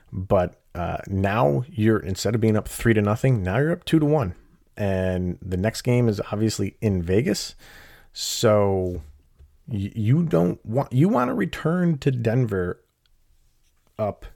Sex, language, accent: male, English, American